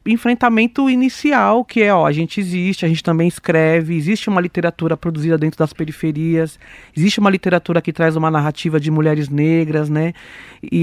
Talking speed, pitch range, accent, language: 170 wpm, 155-200 Hz, Brazilian, Portuguese